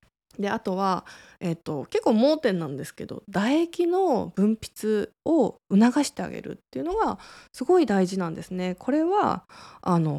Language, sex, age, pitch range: Japanese, female, 20-39, 180-255 Hz